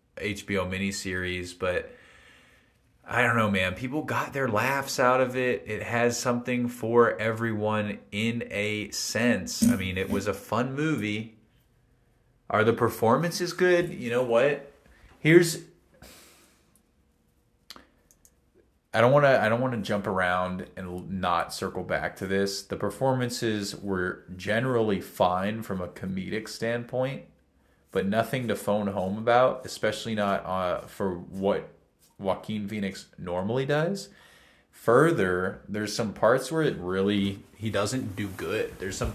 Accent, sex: American, male